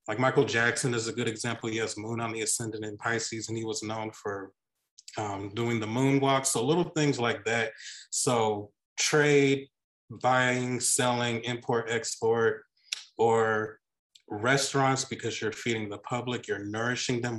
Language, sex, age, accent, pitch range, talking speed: English, male, 30-49, American, 110-130 Hz, 155 wpm